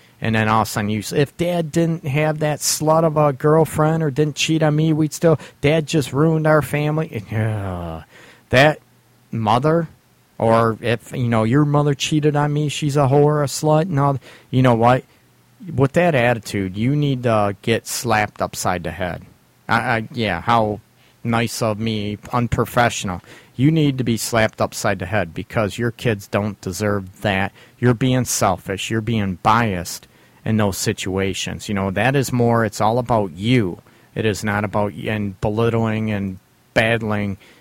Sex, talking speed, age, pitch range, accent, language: male, 180 wpm, 40-59, 105-135 Hz, American, English